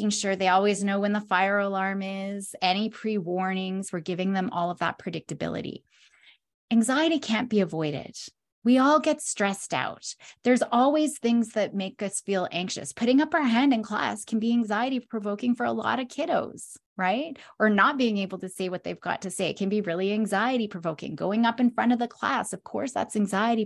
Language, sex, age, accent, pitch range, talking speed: English, female, 30-49, American, 190-240 Hz, 205 wpm